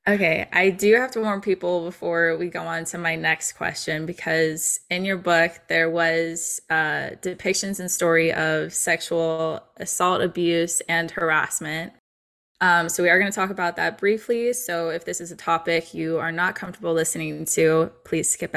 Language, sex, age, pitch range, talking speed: English, female, 20-39, 165-190 Hz, 180 wpm